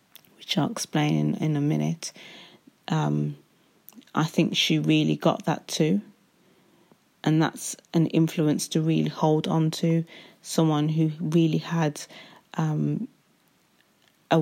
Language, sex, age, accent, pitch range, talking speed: English, female, 30-49, British, 145-165 Hz, 120 wpm